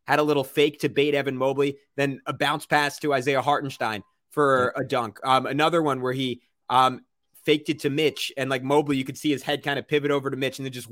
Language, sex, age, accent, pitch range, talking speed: English, male, 20-39, American, 120-145 Hz, 245 wpm